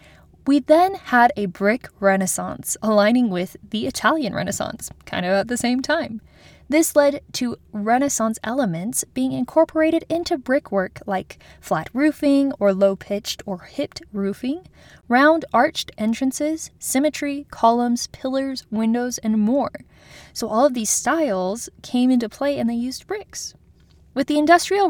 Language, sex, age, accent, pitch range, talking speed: English, female, 10-29, American, 210-295 Hz, 140 wpm